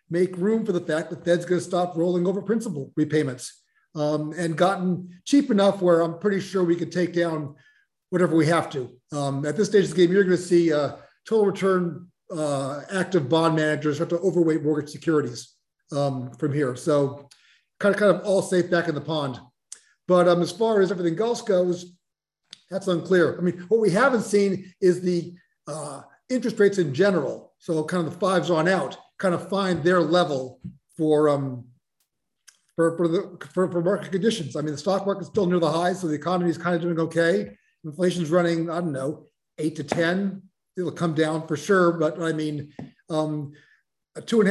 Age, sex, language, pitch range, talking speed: 40-59, male, English, 155-190 Hz, 200 wpm